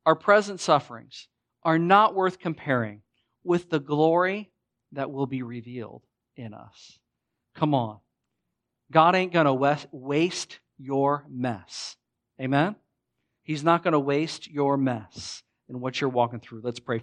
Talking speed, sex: 140 wpm, male